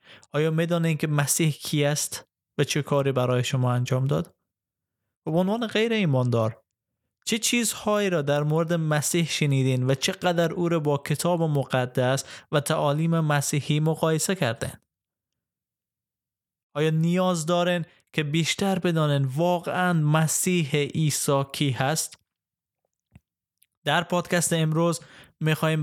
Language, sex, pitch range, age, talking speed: Persian, male, 135-170 Hz, 20-39, 120 wpm